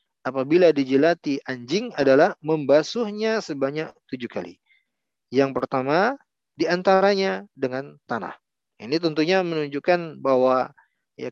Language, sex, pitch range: Indonesian, male, 130-180 Hz